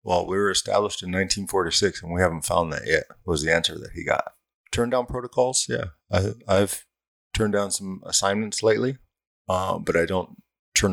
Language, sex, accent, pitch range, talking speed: English, male, American, 85-100 Hz, 180 wpm